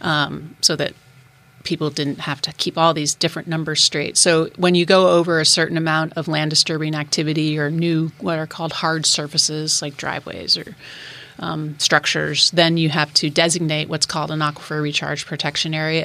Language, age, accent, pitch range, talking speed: English, 30-49, American, 150-165 Hz, 180 wpm